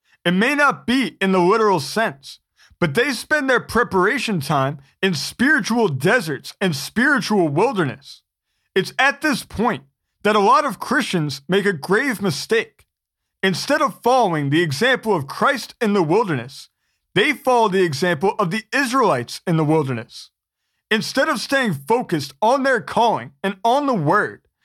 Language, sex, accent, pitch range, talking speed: English, male, American, 175-245 Hz, 155 wpm